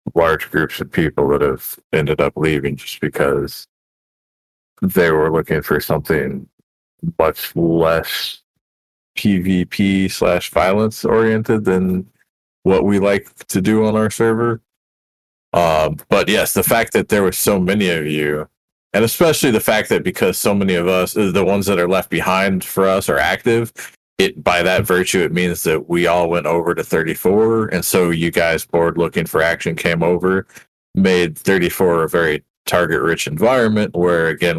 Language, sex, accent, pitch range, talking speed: English, male, American, 85-100 Hz, 165 wpm